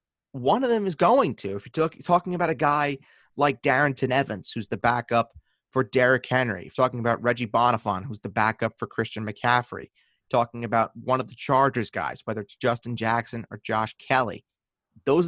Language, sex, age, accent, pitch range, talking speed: English, male, 30-49, American, 120-165 Hz, 185 wpm